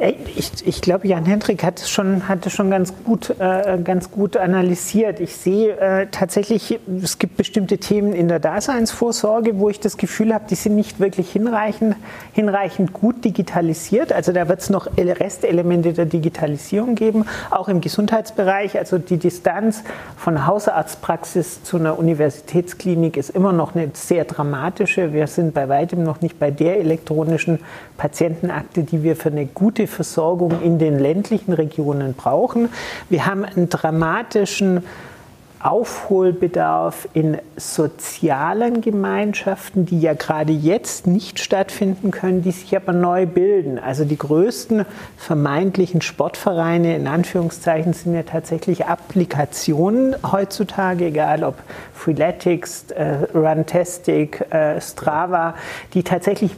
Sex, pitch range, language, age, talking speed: male, 165-200 Hz, German, 40-59, 135 wpm